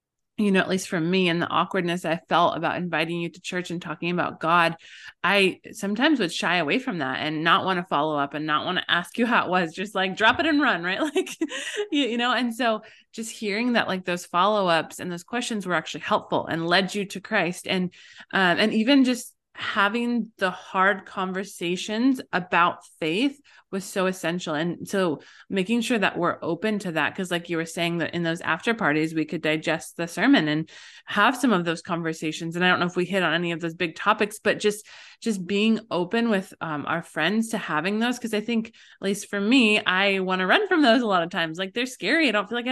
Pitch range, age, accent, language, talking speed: 170-225 Hz, 20-39, American, English, 235 wpm